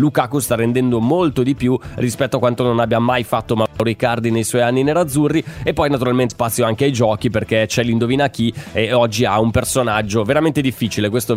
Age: 20-39